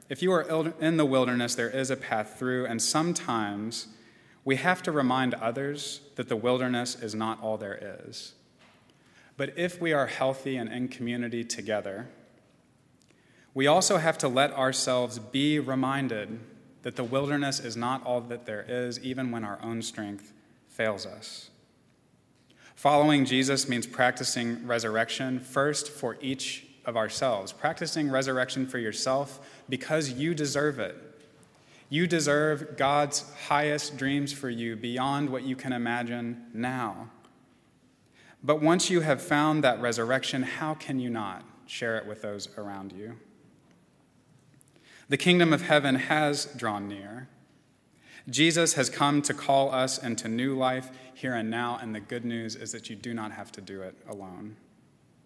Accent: American